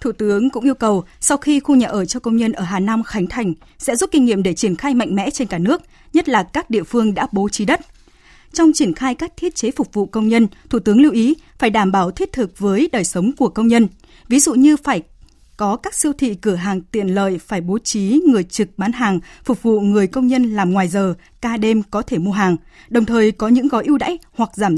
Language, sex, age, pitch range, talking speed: Vietnamese, female, 20-39, 200-260 Hz, 255 wpm